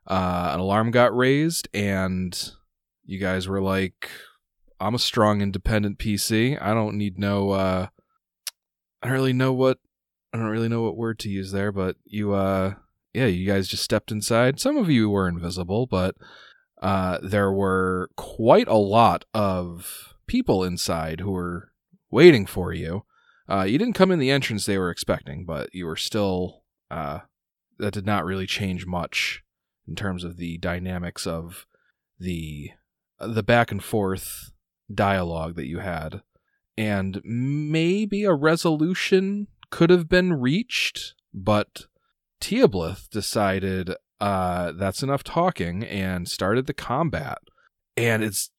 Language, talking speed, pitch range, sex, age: English, 145 wpm, 95-130 Hz, male, 20-39